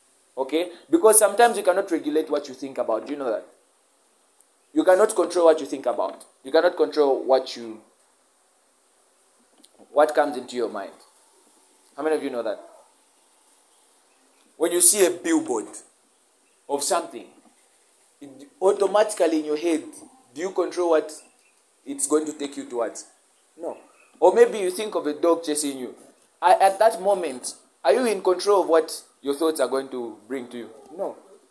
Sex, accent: male, South African